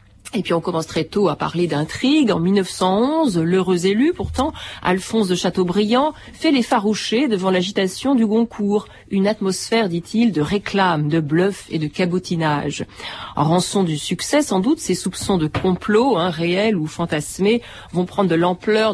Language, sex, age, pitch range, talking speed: French, female, 40-59, 165-215 Hz, 165 wpm